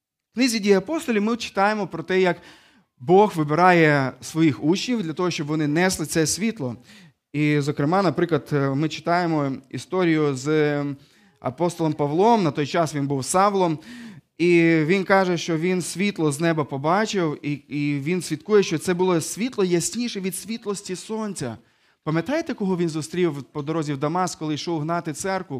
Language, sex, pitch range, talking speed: Ukrainian, male, 155-200 Hz, 155 wpm